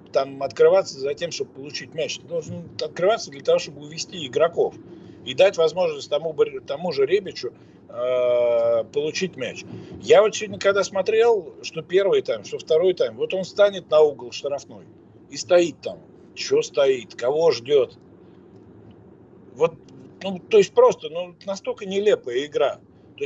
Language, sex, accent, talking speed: Russian, male, native, 150 wpm